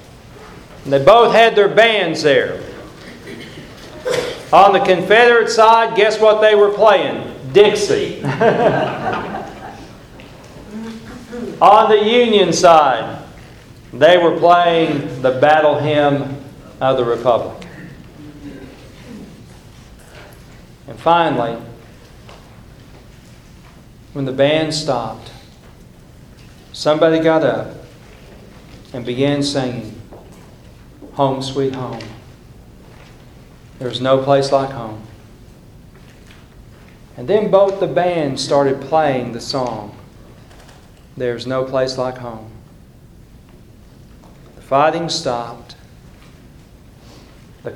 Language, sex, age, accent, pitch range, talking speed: English, male, 50-69, American, 125-175 Hz, 85 wpm